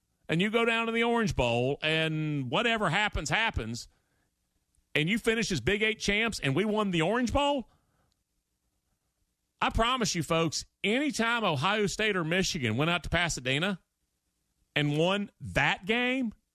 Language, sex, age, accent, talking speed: English, male, 40-59, American, 150 wpm